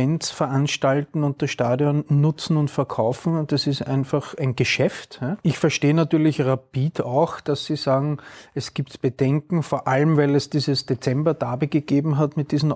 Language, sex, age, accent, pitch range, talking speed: German, male, 30-49, Austrian, 130-150 Hz, 160 wpm